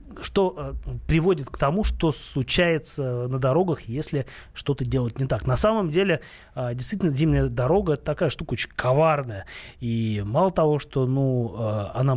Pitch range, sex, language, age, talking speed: 120-155 Hz, male, Russian, 30-49, 145 wpm